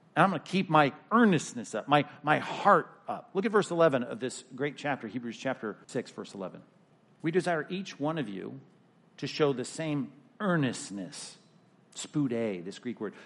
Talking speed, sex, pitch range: 180 wpm, male, 140-195 Hz